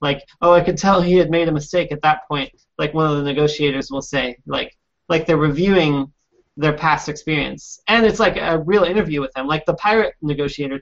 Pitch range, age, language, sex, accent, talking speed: 150-190 Hz, 30-49, English, male, American, 215 wpm